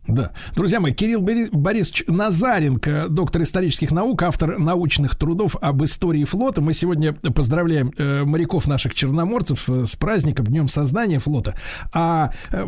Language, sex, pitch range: Russian, male, 140-195 Hz